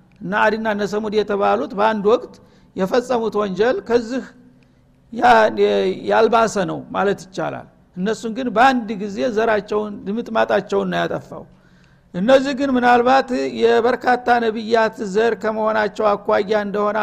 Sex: male